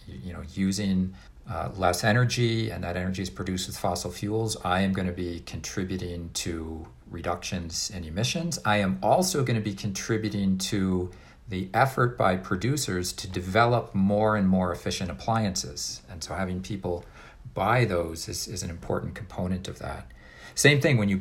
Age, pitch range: 50-69, 90-110 Hz